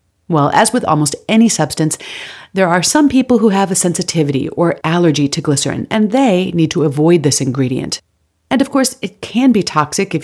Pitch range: 150-215 Hz